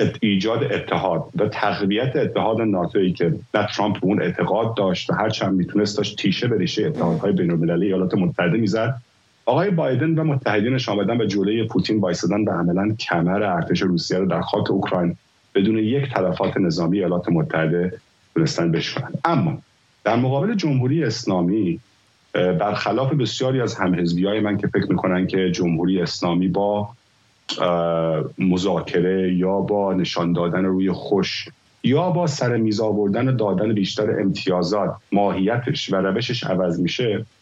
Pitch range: 90-125 Hz